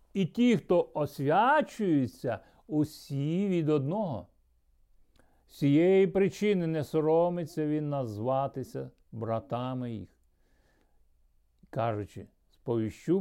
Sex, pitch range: male, 120-175 Hz